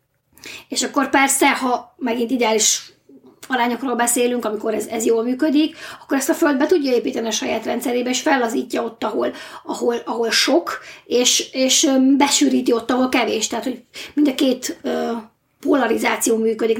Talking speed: 155 wpm